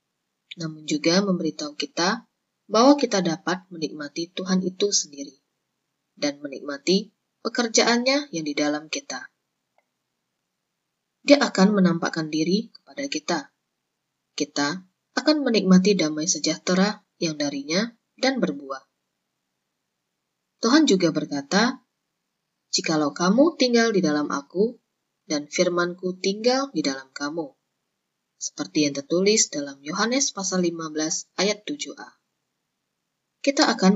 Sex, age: female, 20-39